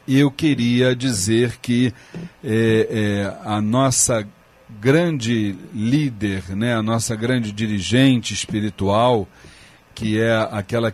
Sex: male